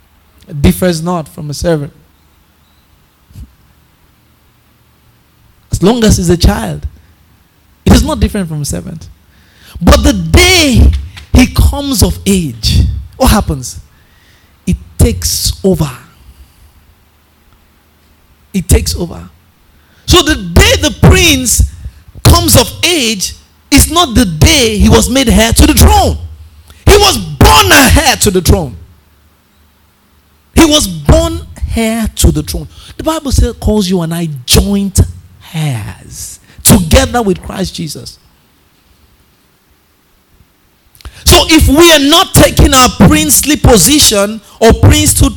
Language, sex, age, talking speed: English, male, 50-69, 120 wpm